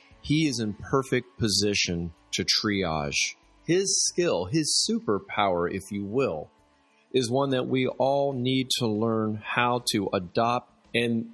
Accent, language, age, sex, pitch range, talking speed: American, English, 30-49, male, 105-130 Hz, 140 wpm